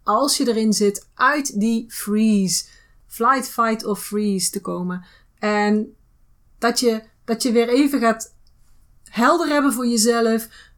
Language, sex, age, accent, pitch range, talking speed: Dutch, female, 30-49, Dutch, 195-240 Hz, 135 wpm